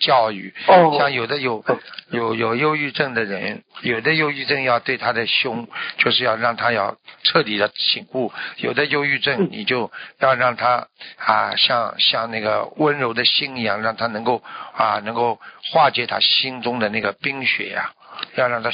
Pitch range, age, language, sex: 115-150 Hz, 60-79, Chinese, male